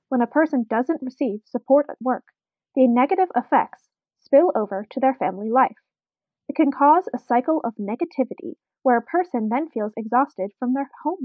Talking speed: 175 wpm